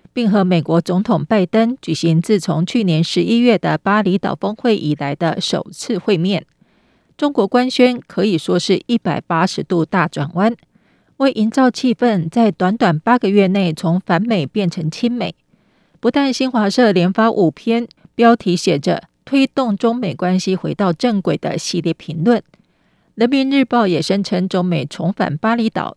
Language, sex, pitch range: Chinese, female, 170-225 Hz